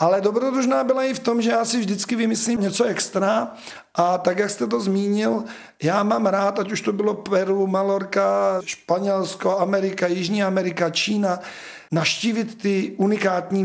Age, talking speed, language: 40-59, 160 wpm, Czech